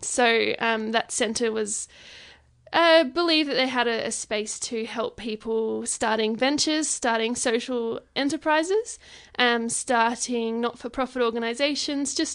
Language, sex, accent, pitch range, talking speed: English, female, Australian, 230-260 Hz, 125 wpm